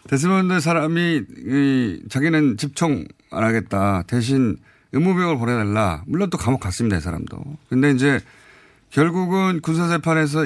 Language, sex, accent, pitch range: Korean, male, native, 110-160 Hz